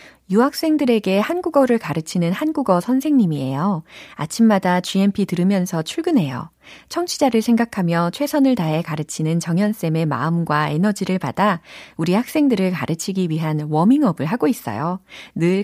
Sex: female